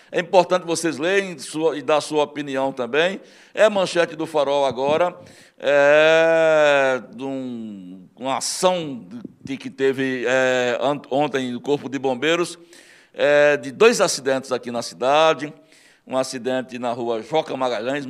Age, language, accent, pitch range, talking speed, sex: 60-79, Portuguese, Brazilian, 130-160 Hz, 150 wpm, male